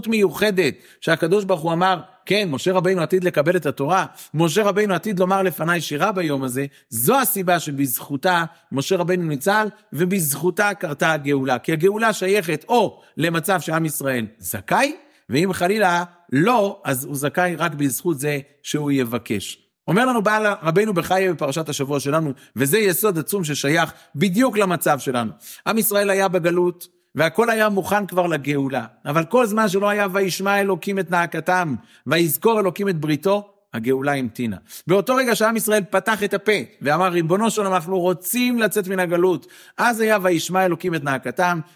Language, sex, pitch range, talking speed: Hebrew, male, 150-200 Hz, 155 wpm